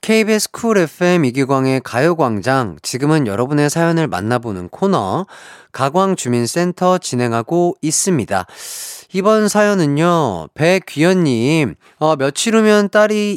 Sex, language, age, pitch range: male, Korean, 30-49, 100-155 Hz